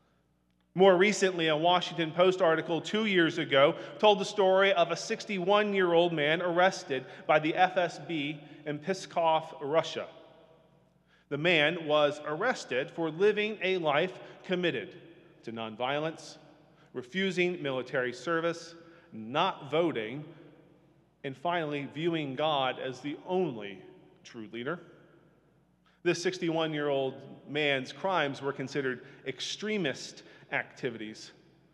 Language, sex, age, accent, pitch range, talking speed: English, male, 30-49, American, 140-175 Hz, 105 wpm